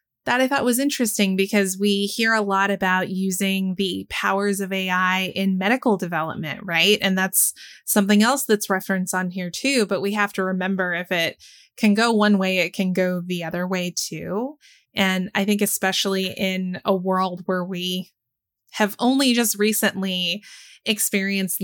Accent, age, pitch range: American, 20-39, 180-210 Hz